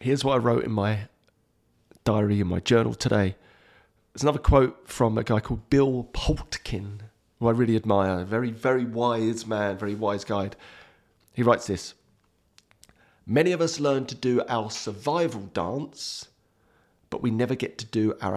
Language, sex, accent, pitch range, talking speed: English, male, British, 105-135 Hz, 165 wpm